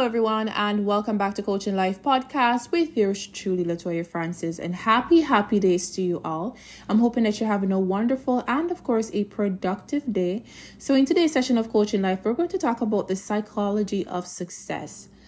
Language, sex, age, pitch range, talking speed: English, female, 20-39, 180-230 Hz, 195 wpm